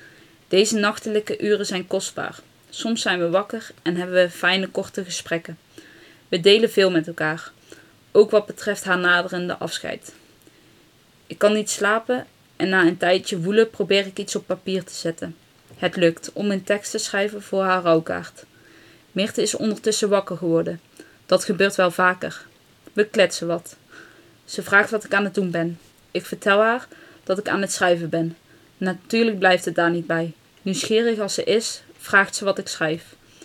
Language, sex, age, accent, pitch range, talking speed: Dutch, female, 20-39, Dutch, 175-210 Hz, 170 wpm